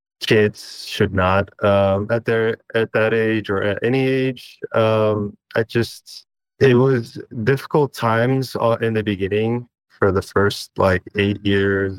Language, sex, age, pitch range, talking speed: English, male, 20-39, 95-115 Hz, 145 wpm